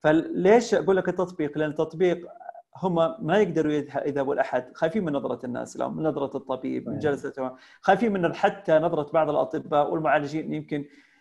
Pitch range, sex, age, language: 140-165 Hz, male, 40-59, Arabic